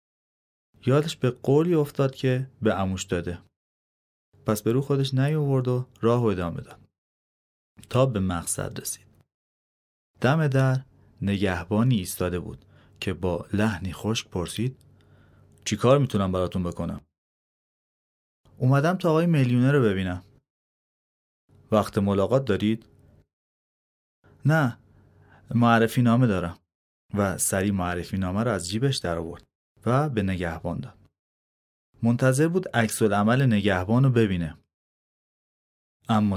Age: 30-49